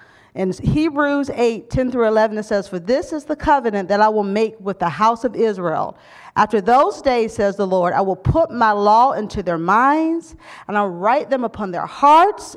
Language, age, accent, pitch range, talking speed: English, 40-59, American, 190-270 Hz, 210 wpm